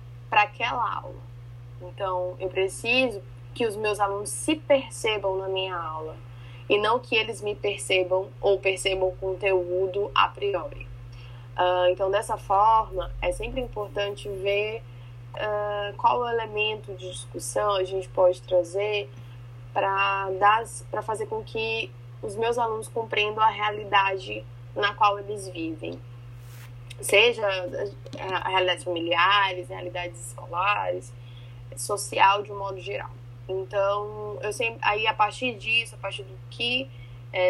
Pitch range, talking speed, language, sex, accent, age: 120-200 Hz, 130 wpm, Portuguese, female, Brazilian, 10-29